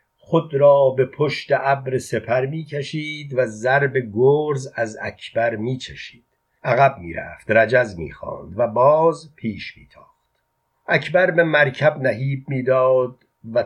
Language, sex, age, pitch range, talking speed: Persian, male, 50-69, 115-140 Hz, 125 wpm